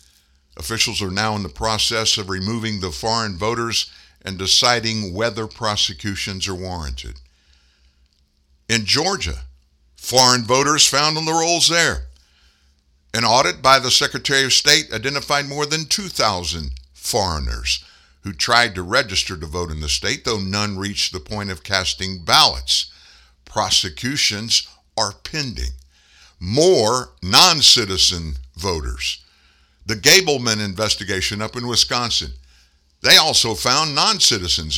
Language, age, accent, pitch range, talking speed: English, 60-79, American, 70-120 Hz, 125 wpm